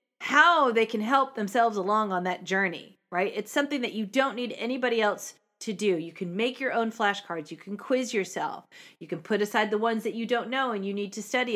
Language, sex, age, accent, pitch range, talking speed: English, female, 40-59, American, 190-235 Hz, 235 wpm